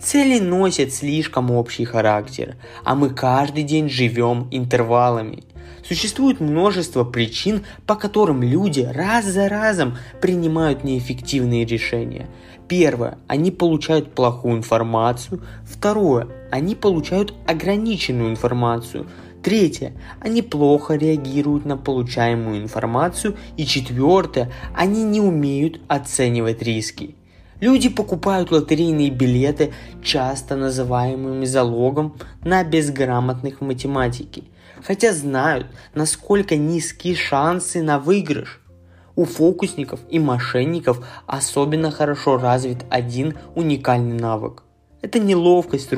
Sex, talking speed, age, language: male, 100 wpm, 20-39, Russian